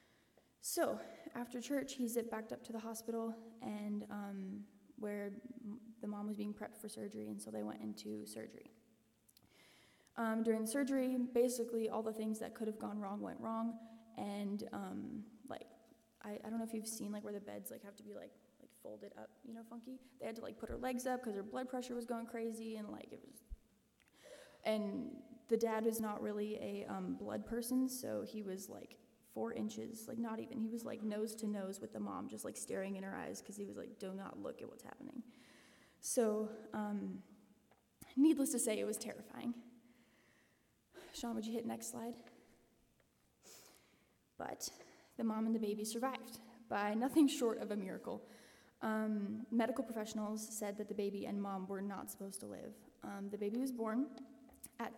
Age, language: 20-39, English